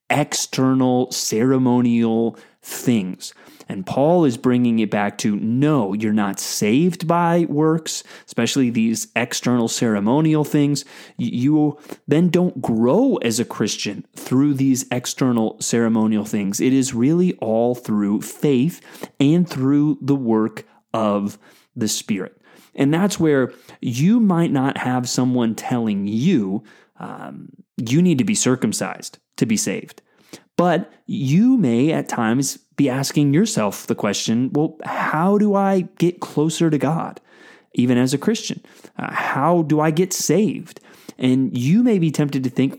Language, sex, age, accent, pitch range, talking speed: English, male, 30-49, American, 125-160 Hz, 140 wpm